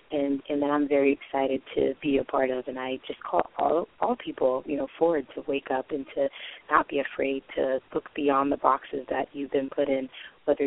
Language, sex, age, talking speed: English, female, 30-49, 225 wpm